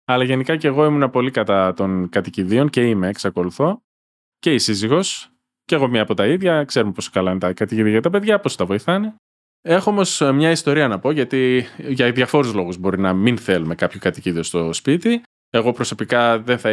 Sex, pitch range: male, 100-150 Hz